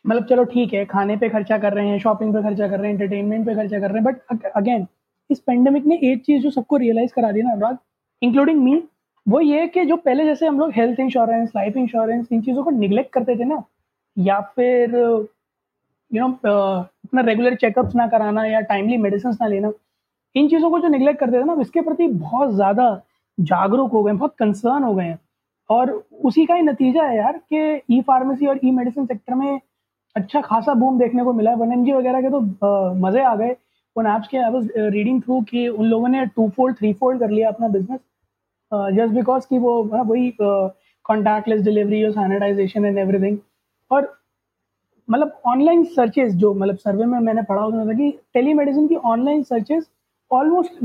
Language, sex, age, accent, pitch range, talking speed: Hindi, female, 20-39, native, 215-275 Hz, 195 wpm